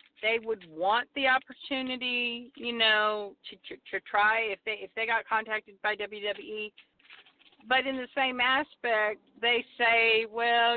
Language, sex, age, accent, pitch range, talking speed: English, female, 50-69, American, 215-275 Hz, 150 wpm